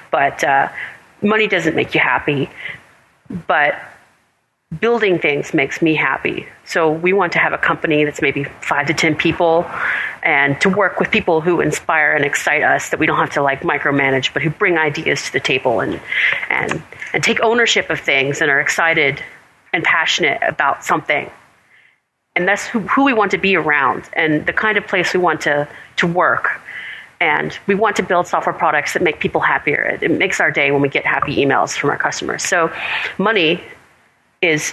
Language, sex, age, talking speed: English, female, 30-49, 190 wpm